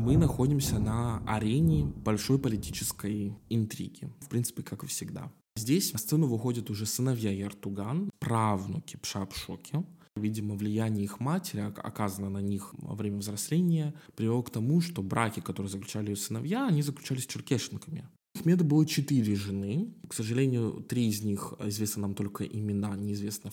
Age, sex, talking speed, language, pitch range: 20-39, male, 150 wpm, Russian, 105-145 Hz